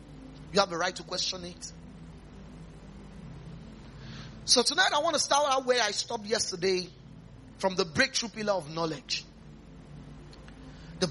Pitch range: 145-235 Hz